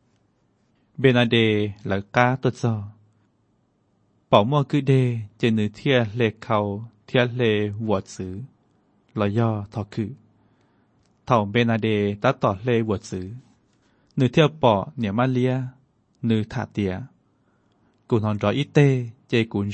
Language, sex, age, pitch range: Thai, male, 20-39, 105-125 Hz